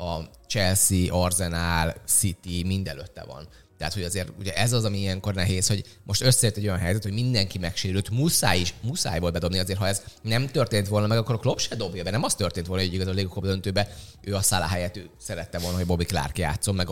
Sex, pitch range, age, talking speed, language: male, 90-115 Hz, 20-39, 225 wpm, Hungarian